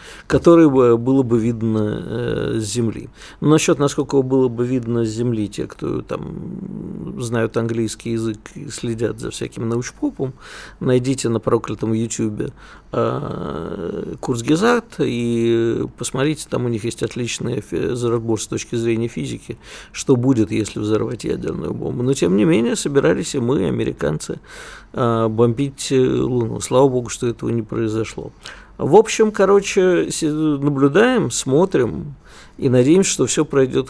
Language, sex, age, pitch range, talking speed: Russian, male, 50-69, 115-150 Hz, 135 wpm